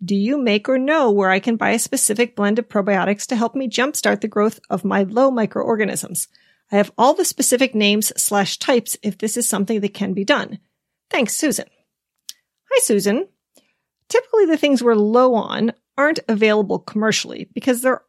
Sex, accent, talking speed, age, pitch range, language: female, American, 180 wpm, 40-59, 200-255 Hz, English